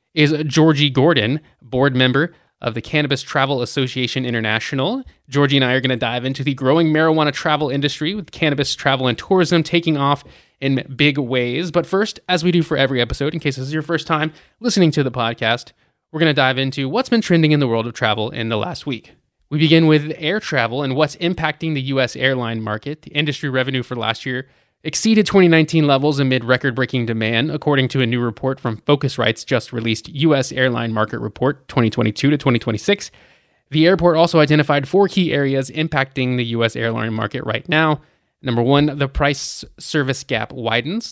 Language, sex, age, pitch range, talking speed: English, male, 20-39, 125-155 Hz, 190 wpm